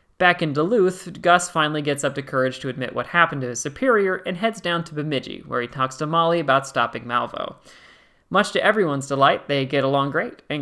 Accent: American